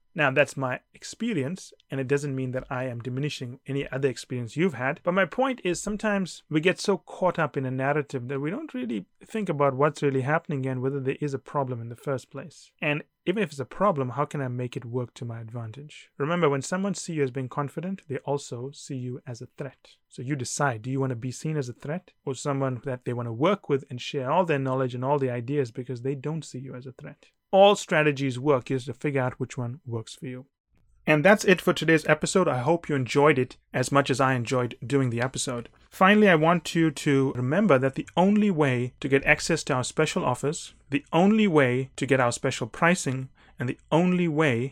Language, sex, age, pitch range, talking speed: English, male, 30-49, 130-160 Hz, 235 wpm